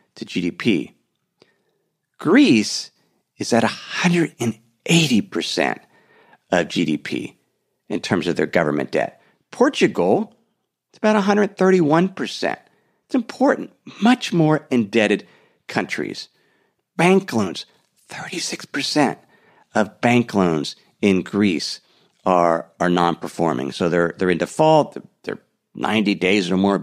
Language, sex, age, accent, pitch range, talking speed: English, male, 50-69, American, 105-165 Hz, 105 wpm